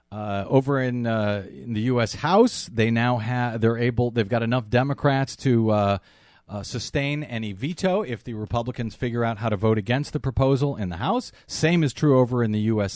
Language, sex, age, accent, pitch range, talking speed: English, male, 40-59, American, 110-155 Hz, 205 wpm